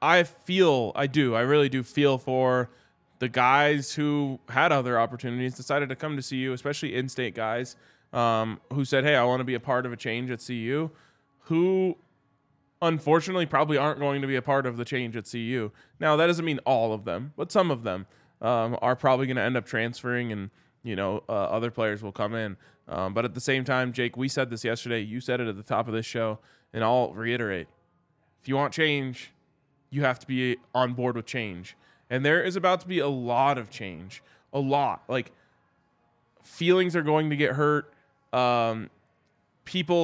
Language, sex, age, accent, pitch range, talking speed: English, male, 20-39, American, 120-145 Hz, 205 wpm